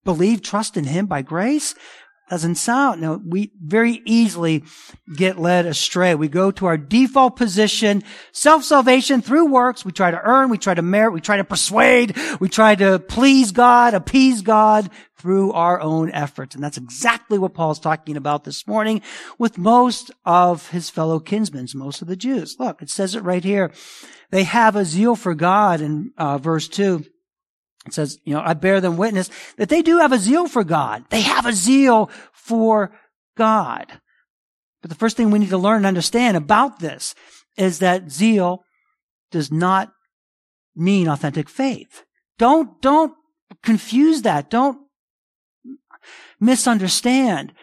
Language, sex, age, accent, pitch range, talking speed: English, male, 50-69, American, 180-245 Hz, 165 wpm